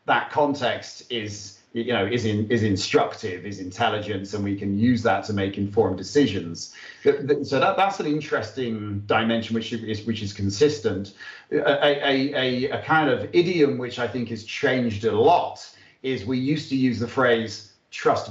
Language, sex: English, male